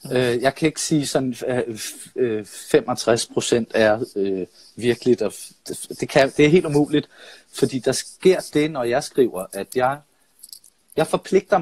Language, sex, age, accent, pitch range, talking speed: Danish, male, 30-49, native, 120-150 Hz, 125 wpm